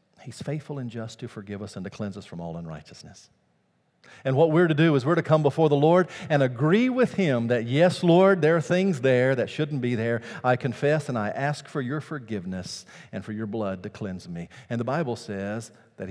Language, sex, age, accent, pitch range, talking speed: English, male, 50-69, American, 100-140 Hz, 225 wpm